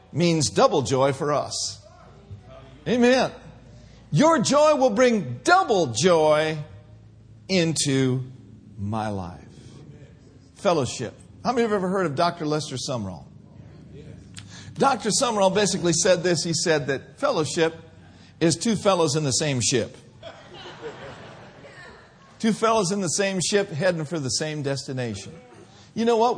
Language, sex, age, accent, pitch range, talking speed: English, male, 50-69, American, 135-210 Hz, 130 wpm